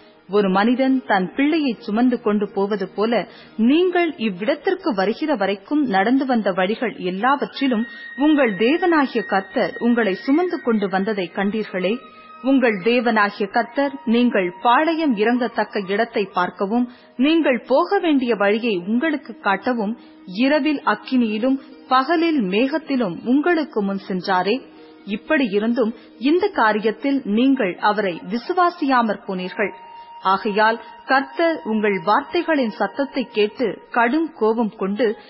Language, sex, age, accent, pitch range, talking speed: Tamil, female, 30-49, native, 210-280 Hz, 100 wpm